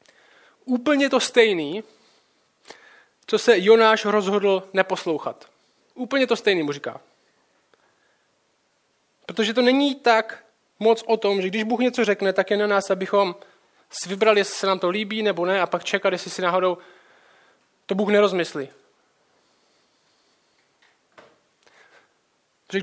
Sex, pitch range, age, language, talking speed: male, 175-225 Hz, 20-39, Czech, 125 wpm